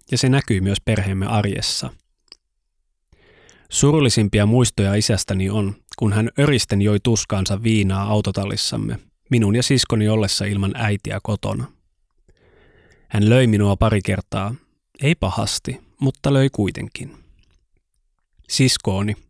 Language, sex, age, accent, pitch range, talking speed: Finnish, male, 20-39, native, 100-120 Hz, 110 wpm